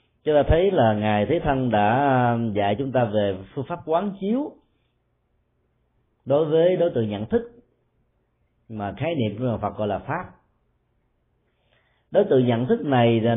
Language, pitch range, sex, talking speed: Vietnamese, 110-145 Hz, male, 160 wpm